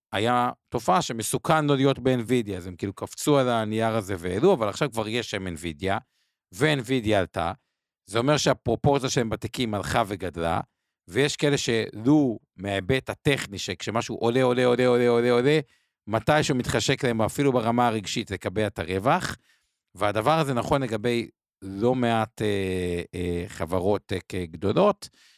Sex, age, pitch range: male, 50-69, 100-130 Hz